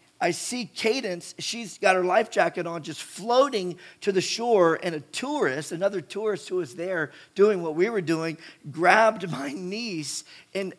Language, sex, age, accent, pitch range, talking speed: English, male, 40-59, American, 180-230 Hz, 170 wpm